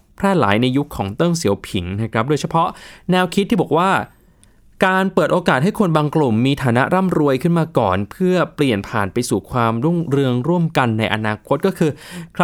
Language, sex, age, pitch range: Thai, male, 20-39, 120-165 Hz